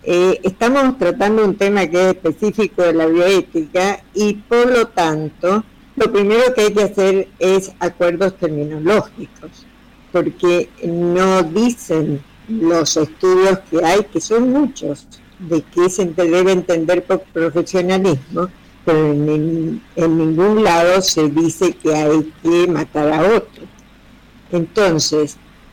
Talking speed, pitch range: 130 wpm, 170-220 Hz